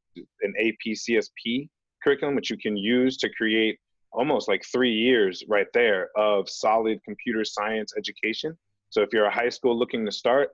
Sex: male